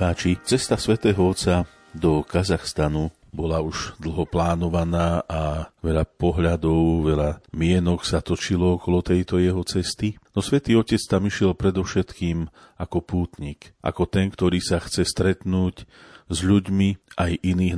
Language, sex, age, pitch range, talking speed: Slovak, male, 40-59, 80-90 Hz, 130 wpm